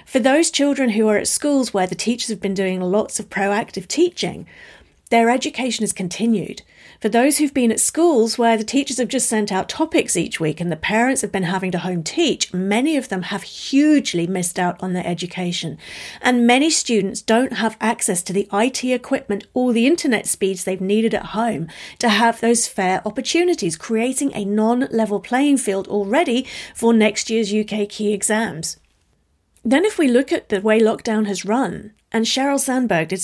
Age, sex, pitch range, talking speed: 40-59, female, 200-250 Hz, 190 wpm